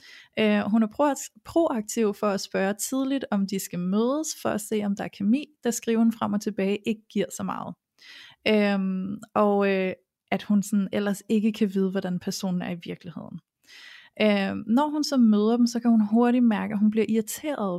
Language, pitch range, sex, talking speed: Danish, 200-245 Hz, female, 200 wpm